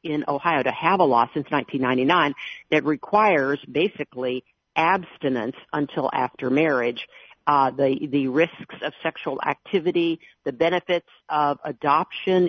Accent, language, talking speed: American, English, 125 wpm